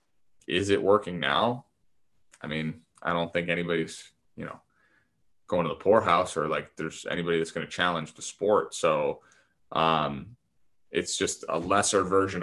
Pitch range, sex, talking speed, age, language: 80-95 Hz, male, 165 wpm, 20-39, English